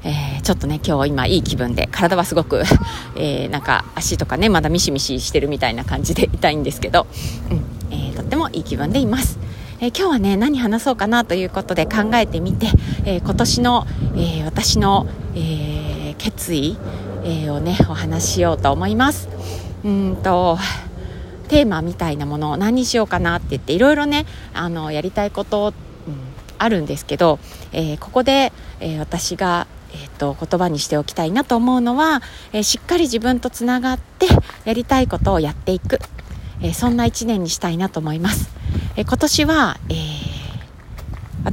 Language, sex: Japanese, female